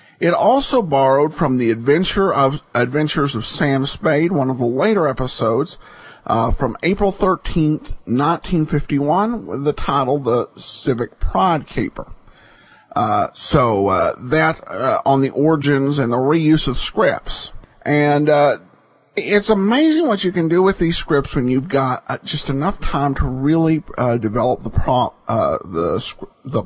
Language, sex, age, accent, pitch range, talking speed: English, male, 50-69, American, 135-200 Hz, 155 wpm